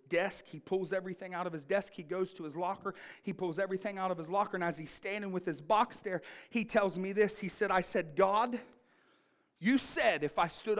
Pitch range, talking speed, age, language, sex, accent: 210-295 Hz, 235 wpm, 40-59, English, male, American